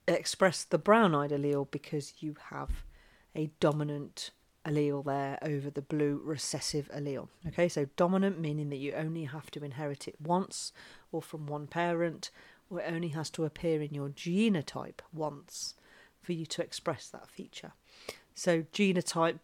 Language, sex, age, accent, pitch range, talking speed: English, female, 40-59, British, 145-170 Hz, 155 wpm